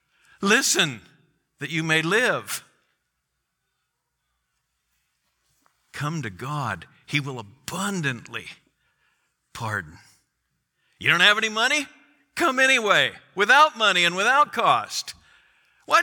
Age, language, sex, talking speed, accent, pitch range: 60-79, English, male, 95 wpm, American, 115-175 Hz